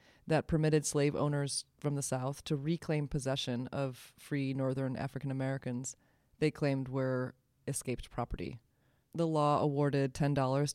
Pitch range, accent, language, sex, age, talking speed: 130-150 Hz, American, English, female, 20-39, 130 wpm